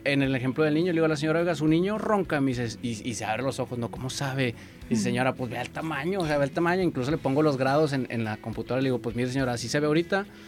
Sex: male